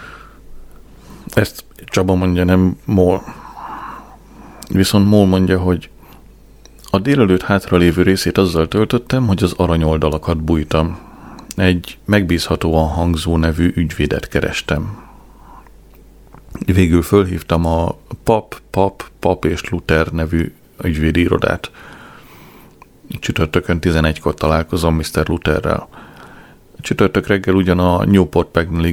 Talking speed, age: 95 wpm, 30-49